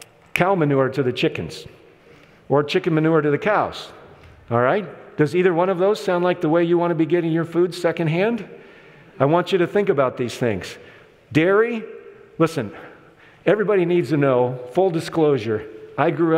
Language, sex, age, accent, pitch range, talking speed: English, male, 50-69, American, 140-195 Hz, 175 wpm